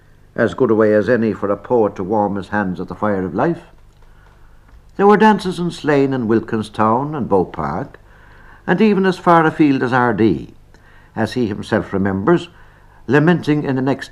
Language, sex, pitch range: English, male, 105-140 Hz